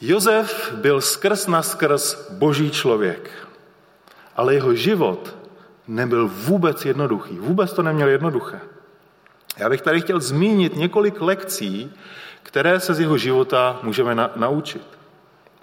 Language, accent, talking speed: Czech, native, 120 wpm